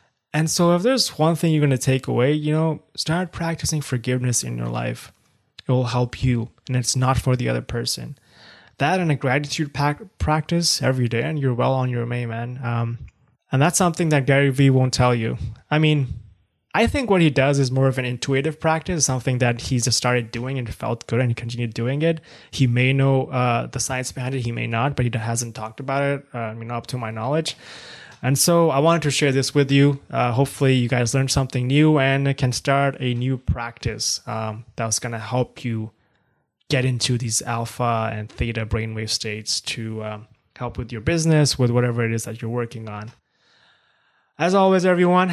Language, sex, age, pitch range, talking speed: English, male, 20-39, 120-145 Hz, 210 wpm